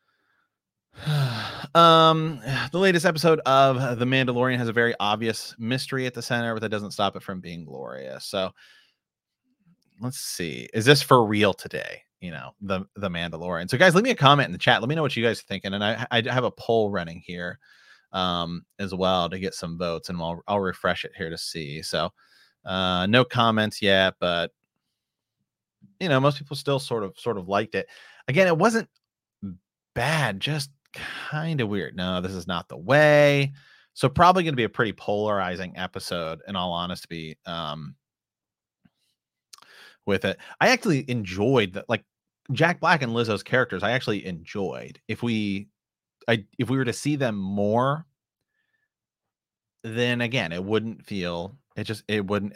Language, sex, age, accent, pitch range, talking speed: English, male, 30-49, American, 95-140 Hz, 175 wpm